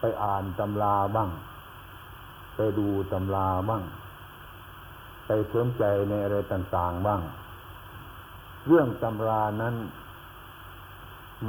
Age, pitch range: 60-79, 90-110 Hz